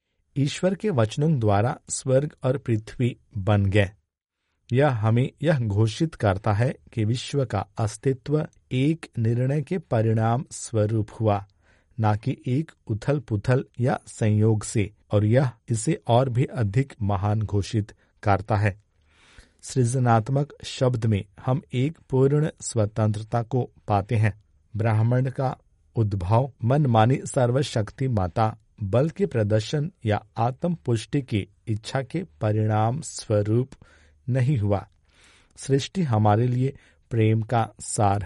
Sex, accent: male, native